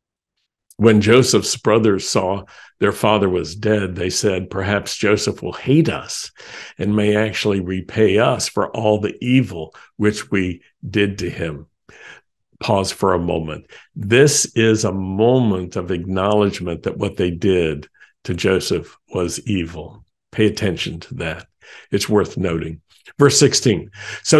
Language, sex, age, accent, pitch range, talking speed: English, male, 50-69, American, 95-120 Hz, 140 wpm